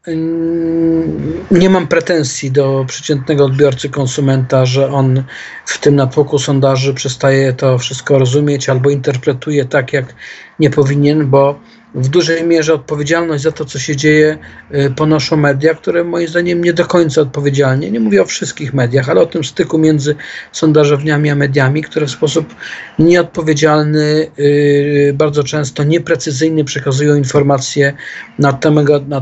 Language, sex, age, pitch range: Polish, male, 50-69, 140-155 Hz